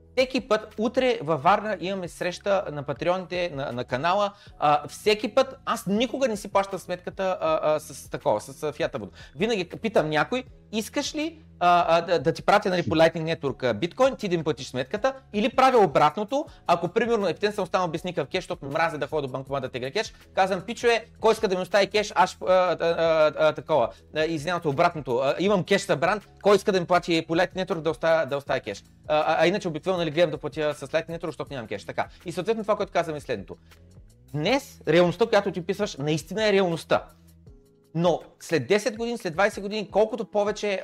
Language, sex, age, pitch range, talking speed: Bulgarian, male, 30-49, 155-210 Hz, 205 wpm